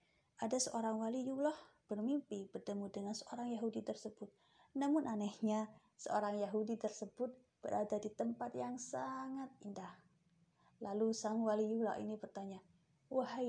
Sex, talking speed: female, 115 wpm